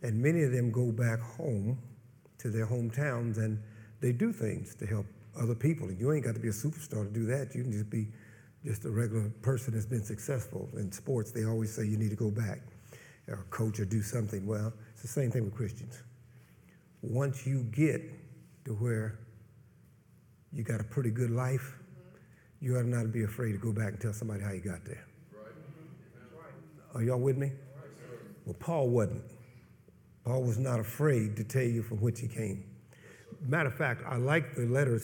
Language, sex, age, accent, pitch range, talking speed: English, male, 50-69, American, 110-135 Hz, 195 wpm